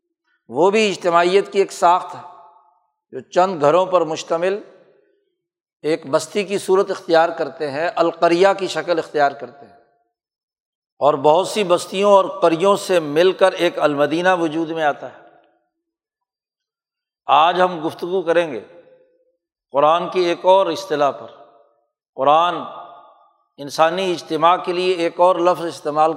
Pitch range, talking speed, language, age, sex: 160-205 Hz, 140 wpm, Urdu, 60-79, male